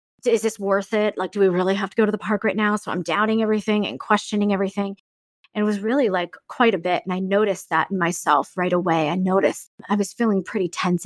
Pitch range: 195-235 Hz